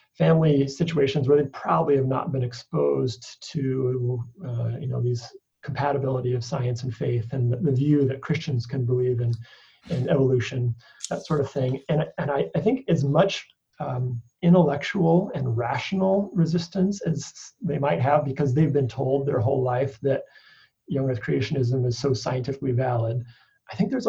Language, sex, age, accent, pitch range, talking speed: English, male, 30-49, American, 125-155 Hz, 170 wpm